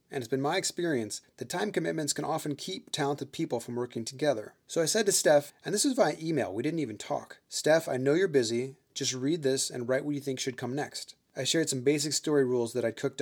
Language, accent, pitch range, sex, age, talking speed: English, American, 120-150 Hz, male, 30-49, 250 wpm